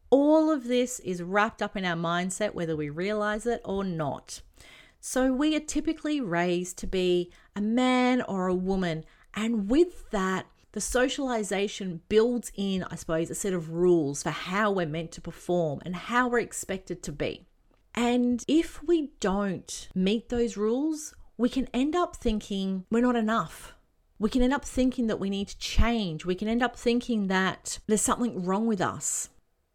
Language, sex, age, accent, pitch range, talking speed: English, female, 40-59, Australian, 185-245 Hz, 180 wpm